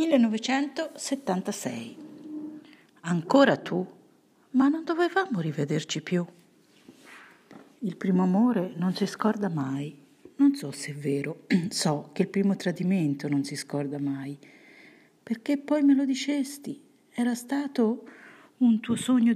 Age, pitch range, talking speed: 50-69, 150-245 Hz, 120 wpm